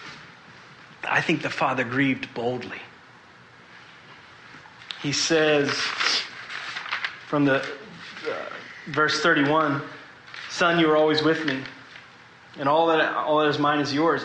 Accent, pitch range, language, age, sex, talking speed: American, 125-150 Hz, English, 30-49, male, 115 wpm